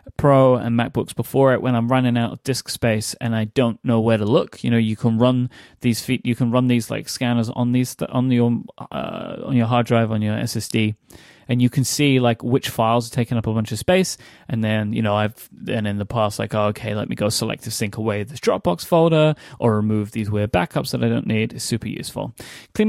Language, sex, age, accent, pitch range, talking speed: English, male, 20-39, British, 115-140 Hz, 245 wpm